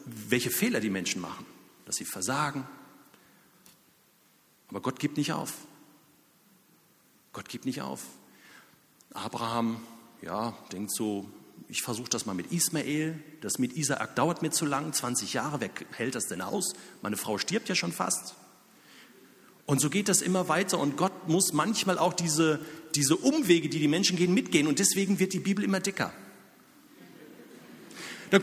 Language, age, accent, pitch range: German, 40-59, German, 155-220 Hz